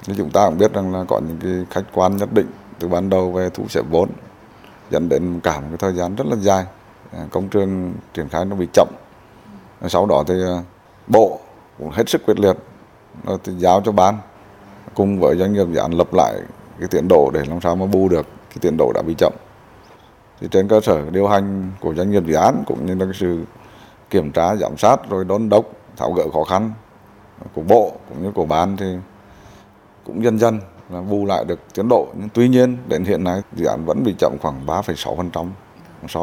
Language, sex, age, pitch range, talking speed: Vietnamese, male, 20-39, 90-105 Hz, 215 wpm